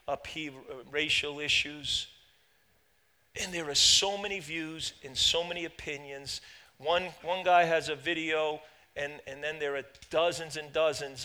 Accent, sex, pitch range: American, male, 150-195 Hz